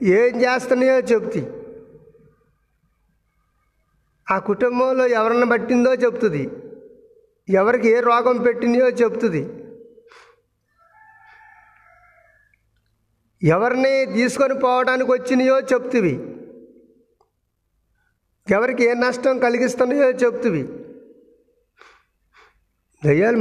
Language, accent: Telugu, native